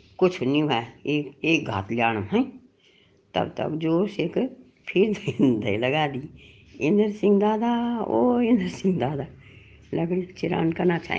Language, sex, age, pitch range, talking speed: Hindi, female, 60-79, 130-170 Hz, 155 wpm